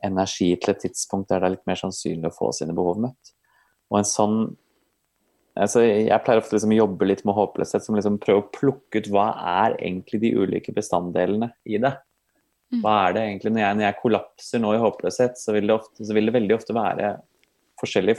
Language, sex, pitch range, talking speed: English, male, 90-110 Hz, 240 wpm